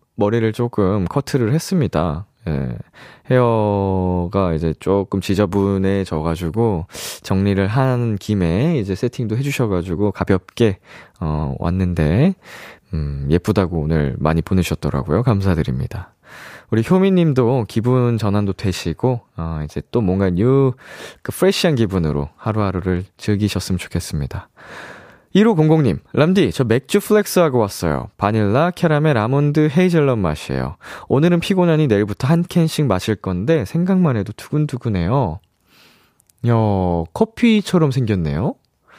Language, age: Korean, 20-39